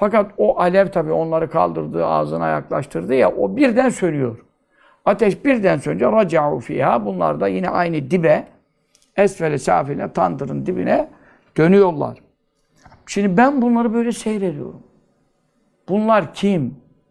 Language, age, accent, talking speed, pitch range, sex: Turkish, 60-79, native, 120 wpm, 130-205 Hz, male